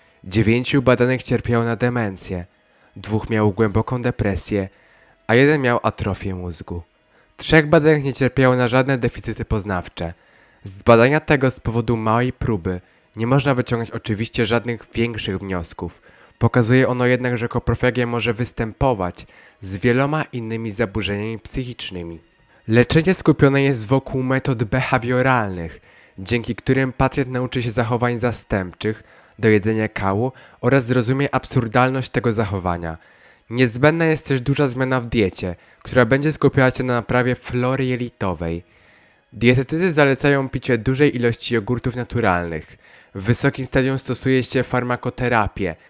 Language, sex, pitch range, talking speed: Polish, male, 110-130 Hz, 125 wpm